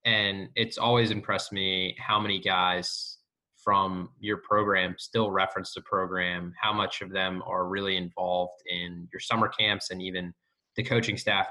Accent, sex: American, male